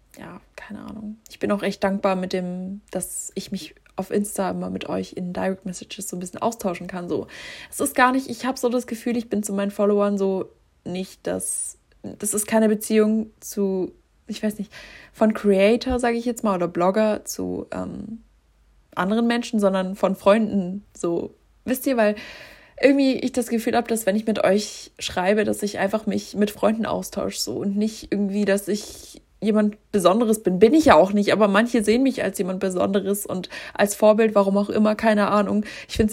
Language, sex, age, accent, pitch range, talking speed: German, female, 20-39, German, 195-225 Hz, 200 wpm